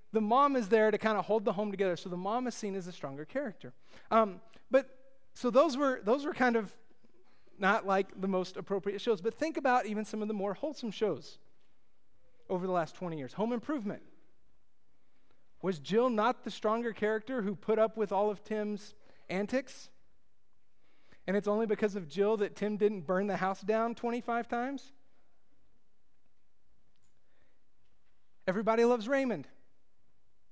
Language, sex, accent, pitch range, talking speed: English, male, American, 170-225 Hz, 165 wpm